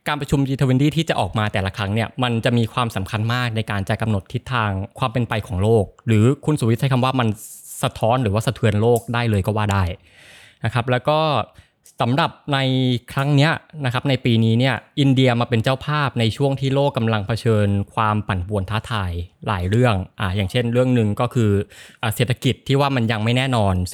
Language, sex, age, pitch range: Thai, male, 20-39, 105-130 Hz